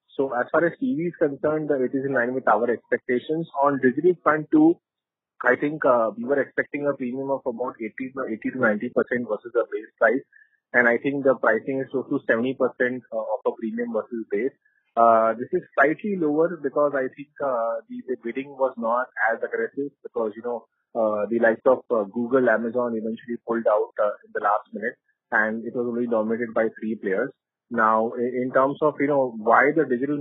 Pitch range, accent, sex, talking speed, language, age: 120-145 Hz, Indian, male, 205 wpm, English, 30-49